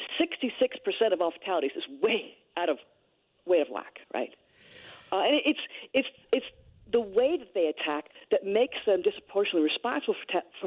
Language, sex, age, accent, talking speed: English, female, 40-59, American, 165 wpm